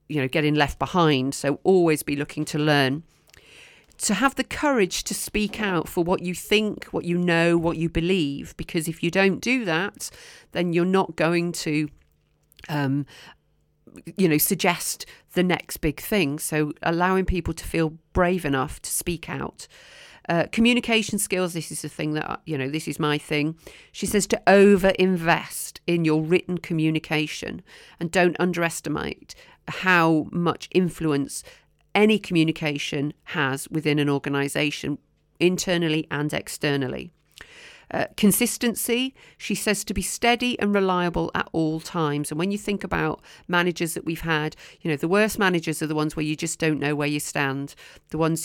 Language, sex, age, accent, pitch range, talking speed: English, female, 40-59, British, 150-185 Hz, 165 wpm